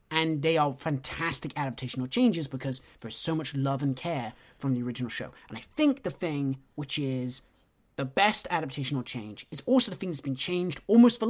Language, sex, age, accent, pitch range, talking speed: English, male, 30-49, British, 135-180 Hz, 195 wpm